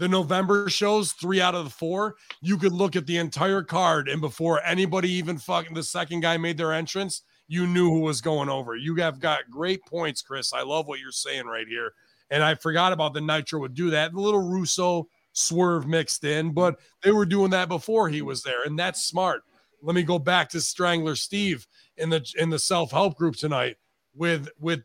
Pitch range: 155-190 Hz